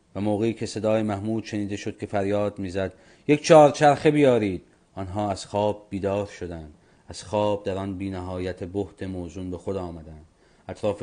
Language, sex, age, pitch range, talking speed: Persian, male, 40-59, 90-110 Hz, 165 wpm